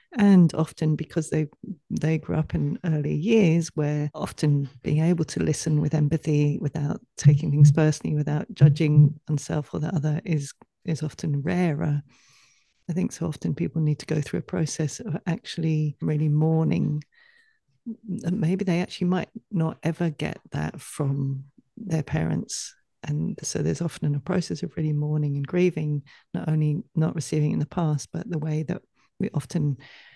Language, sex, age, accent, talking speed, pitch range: English, female, 40-59, British, 165 wpm, 150-170 Hz